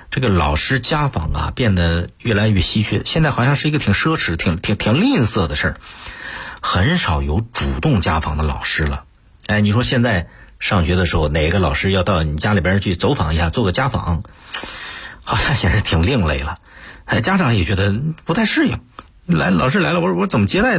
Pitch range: 80-110 Hz